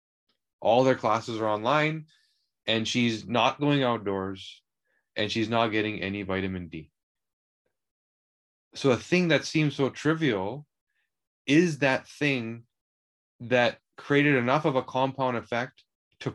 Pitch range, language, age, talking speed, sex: 110-135 Hz, English, 20-39, 130 wpm, male